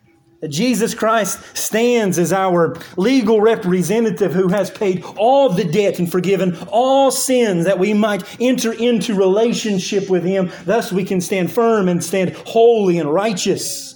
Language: English